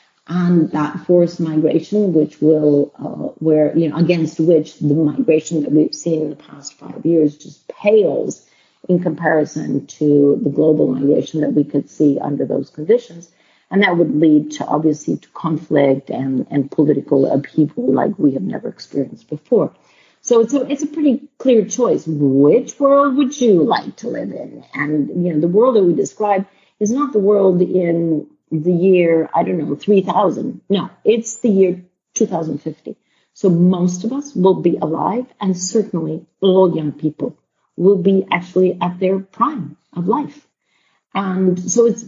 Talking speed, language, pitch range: 170 wpm, English, 155-210 Hz